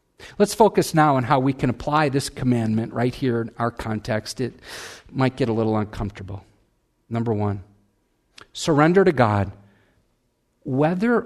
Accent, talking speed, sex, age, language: American, 145 wpm, male, 50-69, English